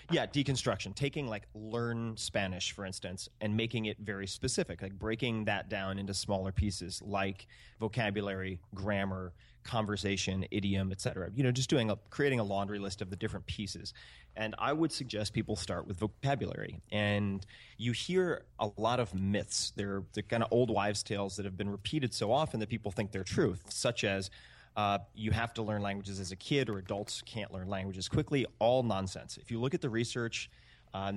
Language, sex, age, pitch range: English, male, 30-49, 100-115 Hz